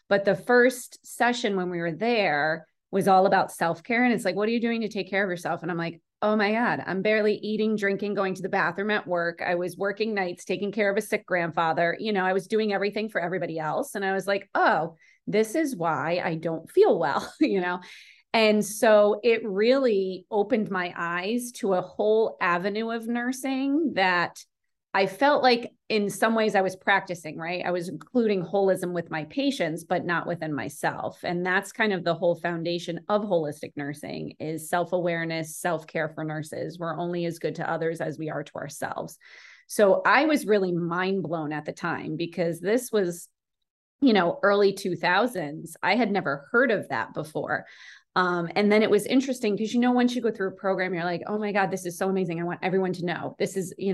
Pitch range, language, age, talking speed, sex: 170-215 Hz, English, 30-49, 210 wpm, female